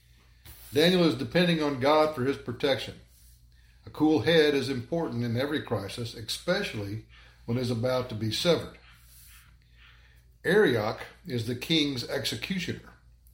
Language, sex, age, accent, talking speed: English, male, 60-79, American, 125 wpm